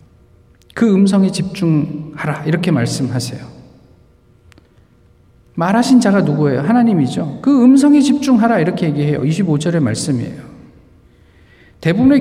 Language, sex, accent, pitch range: Korean, male, native, 160-230 Hz